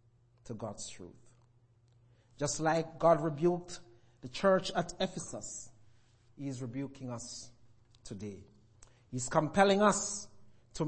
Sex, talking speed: male, 110 wpm